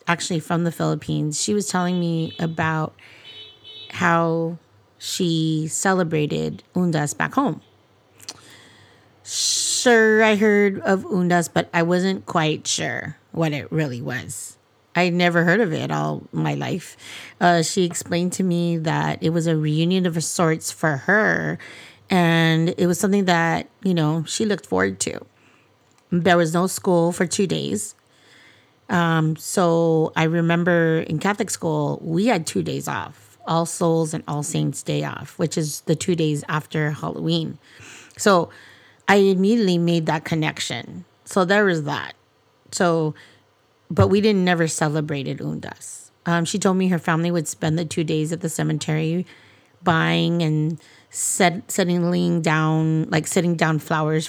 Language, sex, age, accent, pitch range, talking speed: English, female, 30-49, American, 150-175 Hz, 155 wpm